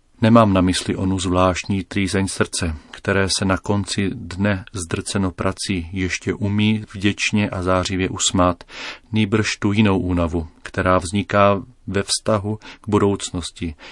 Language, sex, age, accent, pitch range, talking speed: Czech, male, 40-59, native, 95-105 Hz, 130 wpm